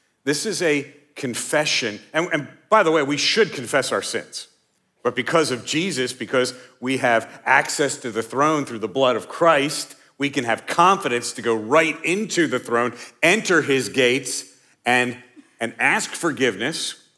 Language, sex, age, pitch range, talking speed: English, male, 50-69, 120-150 Hz, 165 wpm